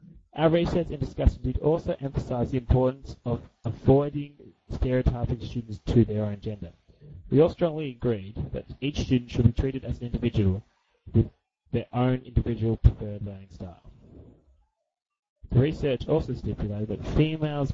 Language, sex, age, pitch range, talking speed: English, male, 30-49, 110-130 Hz, 145 wpm